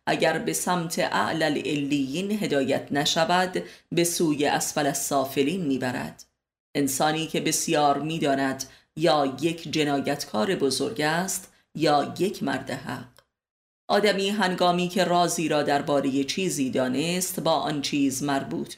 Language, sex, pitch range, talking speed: Persian, female, 140-175 Hz, 120 wpm